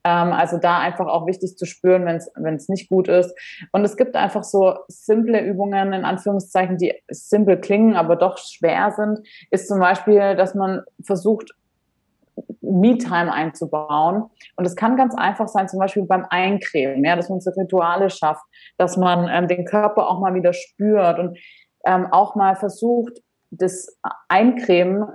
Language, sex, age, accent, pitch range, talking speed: German, female, 20-39, German, 180-205 Hz, 160 wpm